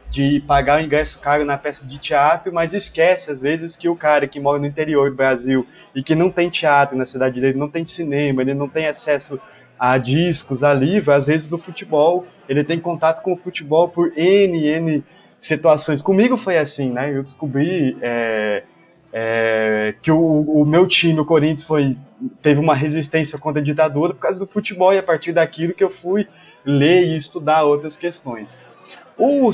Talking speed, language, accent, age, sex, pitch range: 195 wpm, Portuguese, Brazilian, 20-39, male, 135-165 Hz